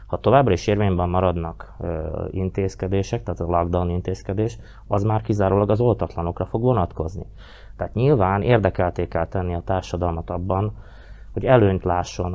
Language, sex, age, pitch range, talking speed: Hungarian, male, 20-39, 90-105 Hz, 135 wpm